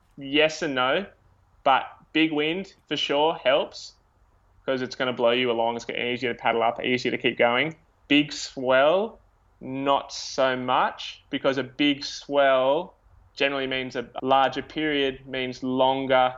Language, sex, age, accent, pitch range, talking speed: English, male, 20-39, Australian, 115-135 Hz, 150 wpm